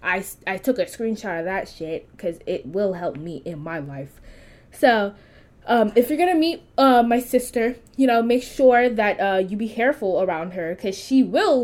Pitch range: 185-240 Hz